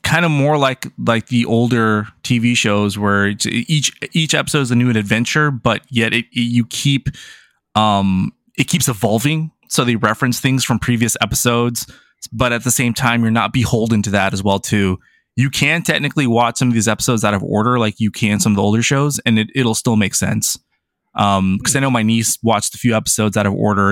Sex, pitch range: male, 105-130 Hz